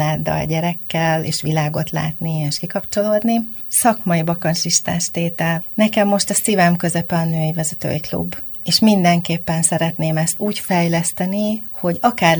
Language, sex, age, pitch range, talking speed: Hungarian, female, 30-49, 160-180 Hz, 135 wpm